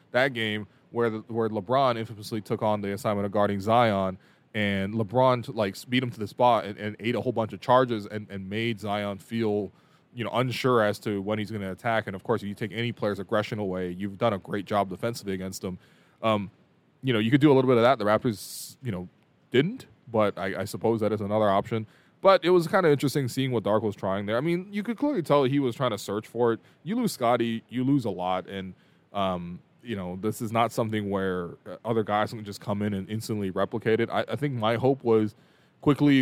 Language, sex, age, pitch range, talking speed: English, male, 20-39, 100-120 Hz, 240 wpm